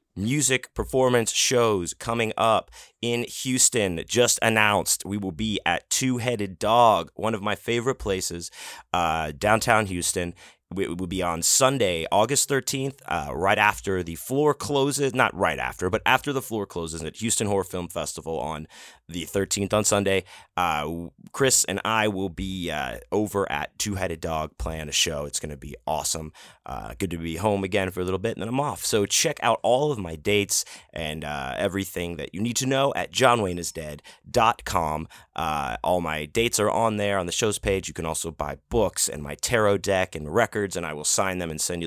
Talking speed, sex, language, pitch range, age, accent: 190 wpm, male, English, 85-120 Hz, 30-49, American